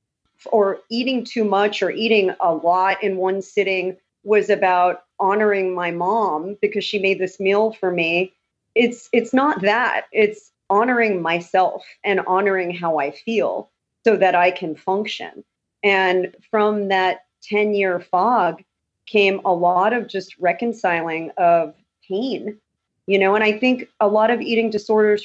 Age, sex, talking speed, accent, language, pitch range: 40-59, female, 150 wpm, American, English, 180-220 Hz